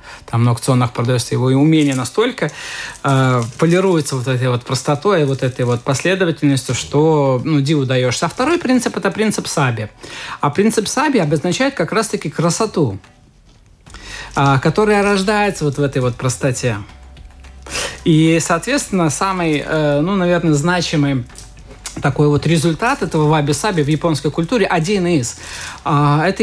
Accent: native